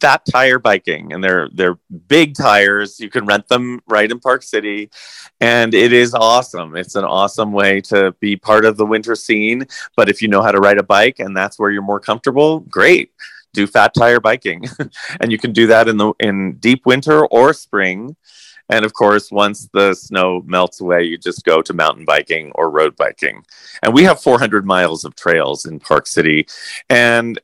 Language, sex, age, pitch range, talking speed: English, male, 30-49, 90-115 Hz, 200 wpm